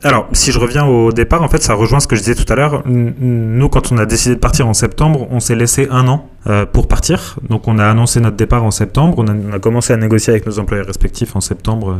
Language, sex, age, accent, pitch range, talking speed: French, male, 20-39, French, 100-120 Hz, 275 wpm